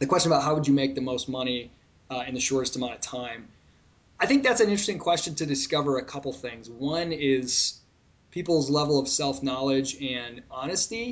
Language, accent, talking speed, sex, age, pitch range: English, American, 200 wpm, male, 20-39, 125-150 Hz